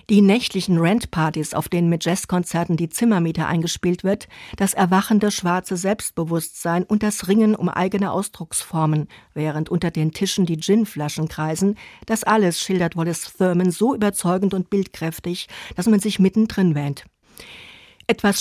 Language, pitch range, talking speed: German, 165-200 Hz, 140 wpm